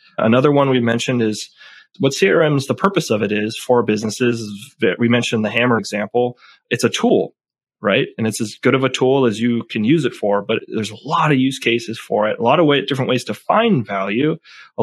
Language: English